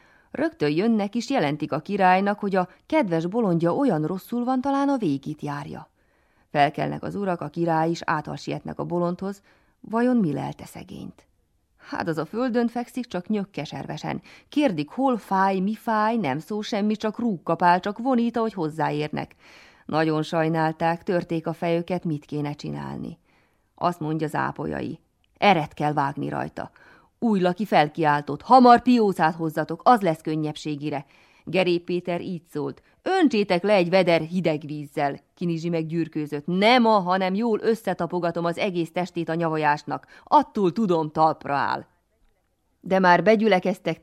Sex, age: female, 30-49